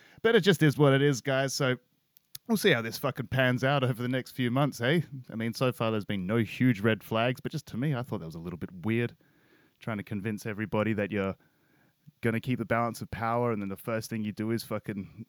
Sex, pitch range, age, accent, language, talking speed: male, 115-140 Hz, 20-39, Australian, English, 260 wpm